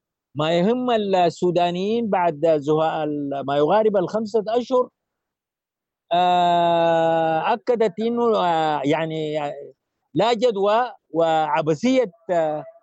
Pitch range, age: 150-215 Hz, 50-69